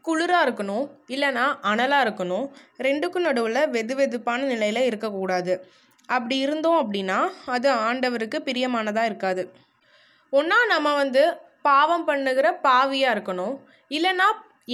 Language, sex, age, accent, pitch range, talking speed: Tamil, female, 20-39, native, 220-295 Hz, 105 wpm